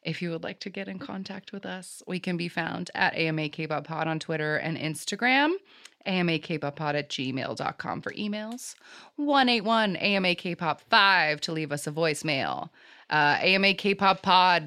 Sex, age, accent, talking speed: female, 20-39, American, 165 wpm